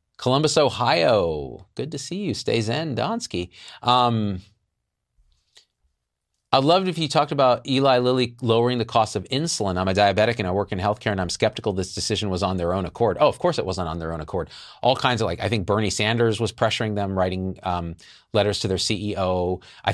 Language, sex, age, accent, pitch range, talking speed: English, male, 40-59, American, 90-115 Hz, 210 wpm